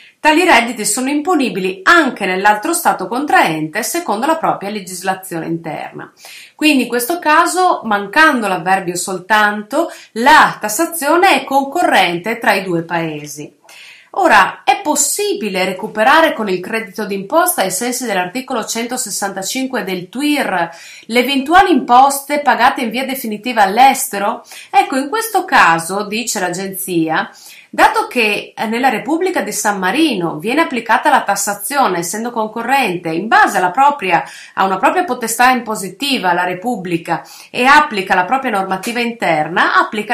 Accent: native